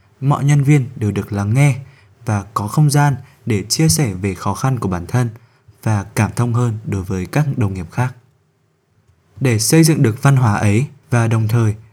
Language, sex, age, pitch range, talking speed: Vietnamese, male, 20-39, 105-140 Hz, 200 wpm